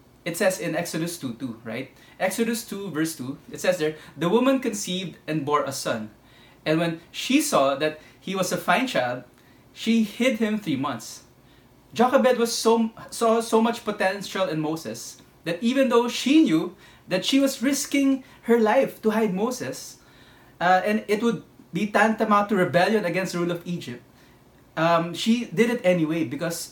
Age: 20-39